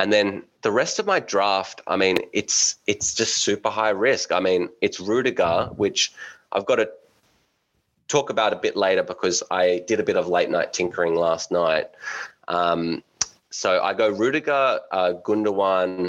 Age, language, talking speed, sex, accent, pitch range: 20-39, English, 170 wpm, male, Australian, 85-110 Hz